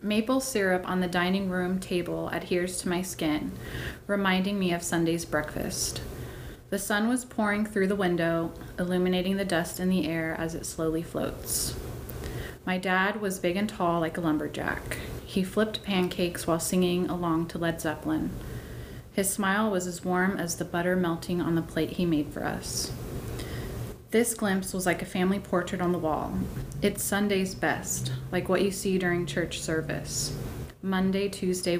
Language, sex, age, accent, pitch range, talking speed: English, female, 30-49, American, 160-185 Hz, 170 wpm